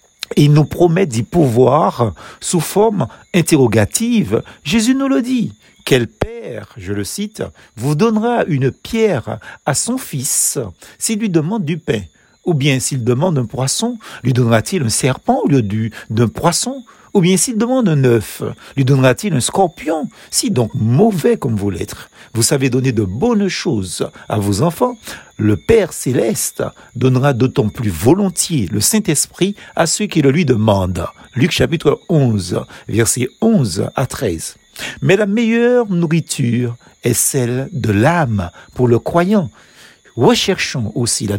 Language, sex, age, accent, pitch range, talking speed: French, male, 50-69, French, 120-185 Hz, 155 wpm